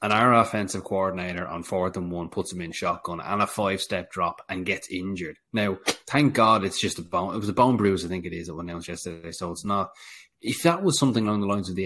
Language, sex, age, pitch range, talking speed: English, male, 20-39, 90-110 Hz, 260 wpm